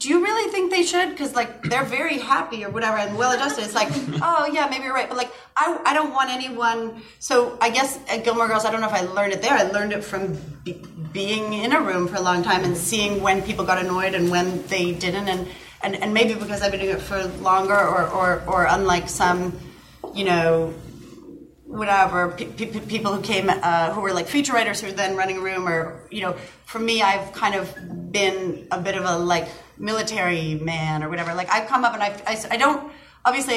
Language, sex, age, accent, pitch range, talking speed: English, female, 30-49, American, 185-230 Hz, 230 wpm